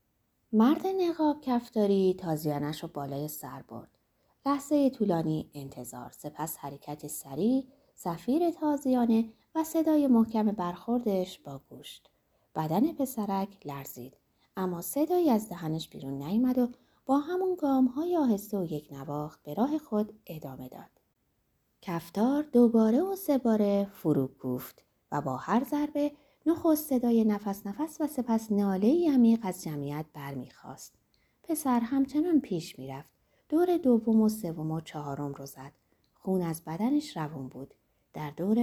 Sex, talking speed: female, 135 wpm